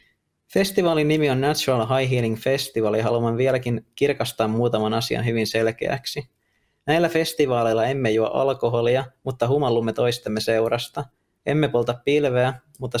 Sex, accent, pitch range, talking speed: male, native, 115-135 Hz, 130 wpm